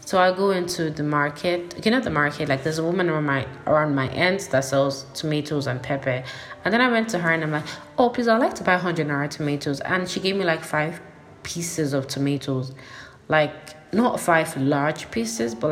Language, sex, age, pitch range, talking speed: English, female, 20-39, 145-175 Hz, 220 wpm